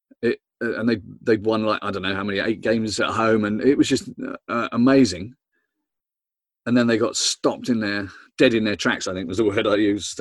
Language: English